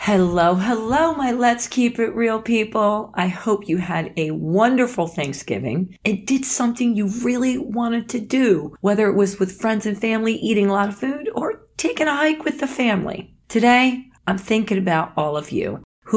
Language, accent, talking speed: English, American, 185 wpm